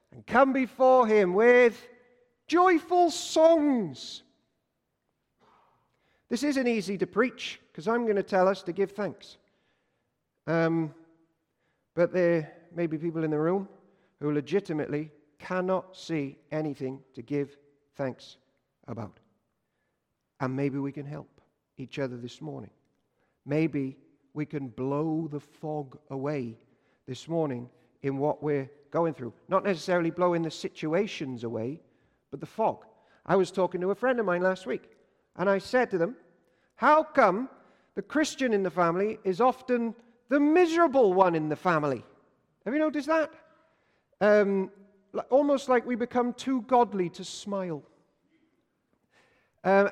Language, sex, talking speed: English, male, 140 wpm